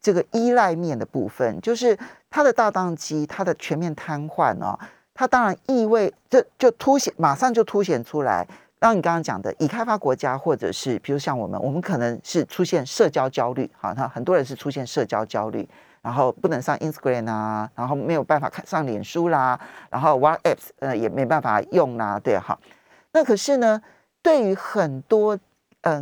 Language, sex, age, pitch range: Chinese, male, 40-59, 150-230 Hz